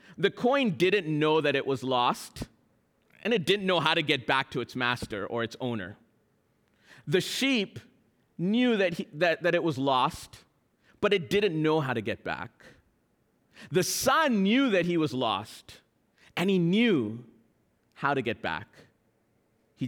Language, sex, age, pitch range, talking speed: English, male, 40-59, 160-220 Hz, 165 wpm